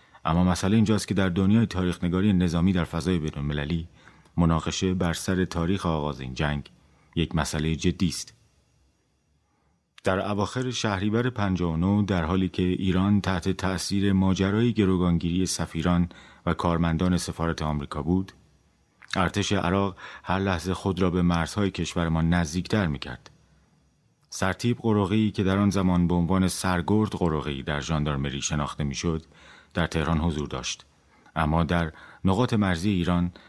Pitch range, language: 80-95 Hz, Persian